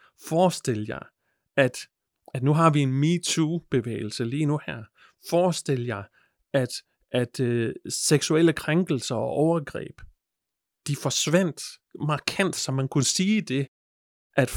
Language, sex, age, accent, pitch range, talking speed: Danish, male, 30-49, native, 130-165 Hz, 130 wpm